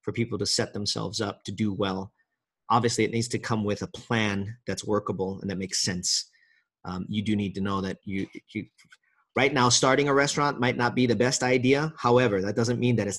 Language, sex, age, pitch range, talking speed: English, male, 30-49, 95-120 Hz, 225 wpm